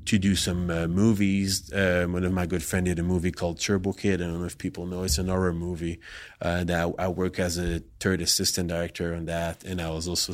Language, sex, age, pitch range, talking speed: English, male, 20-39, 90-110 Hz, 245 wpm